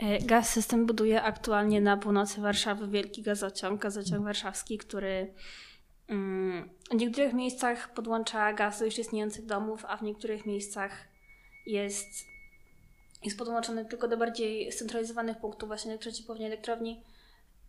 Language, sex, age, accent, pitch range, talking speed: Polish, female, 20-39, native, 195-225 Hz, 120 wpm